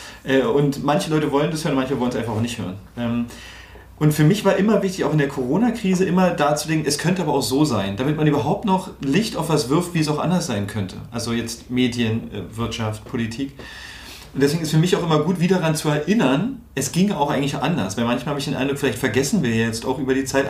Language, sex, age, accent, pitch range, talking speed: German, male, 30-49, German, 125-160 Hz, 235 wpm